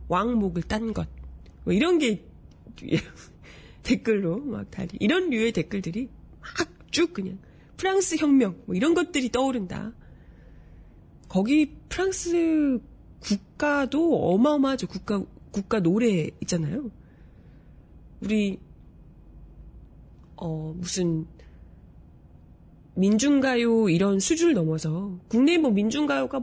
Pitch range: 185-295 Hz